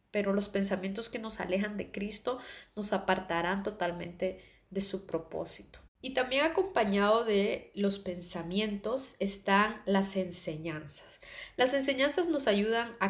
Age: 20-39